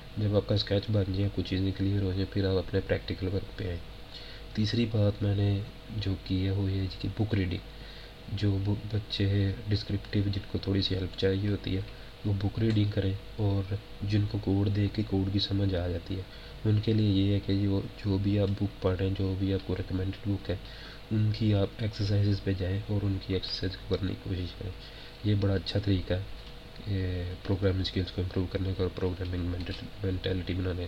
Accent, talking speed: Indian, 165 wpm